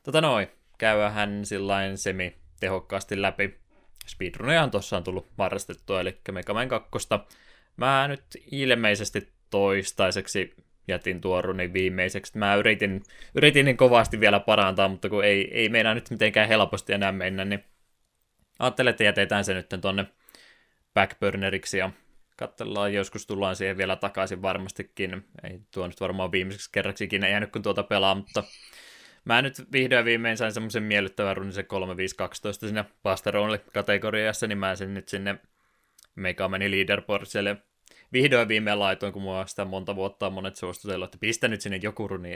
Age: 20-39